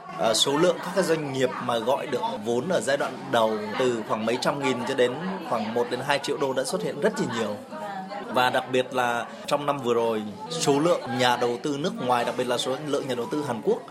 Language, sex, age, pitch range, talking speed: Vietnamese, male, 20-39, 125-170 Hz, 235 wpm